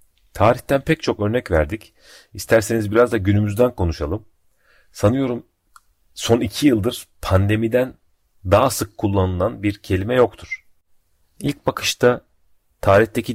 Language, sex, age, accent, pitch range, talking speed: Turkish, male, 40-59, native, 85-110 Hz, 110 wpm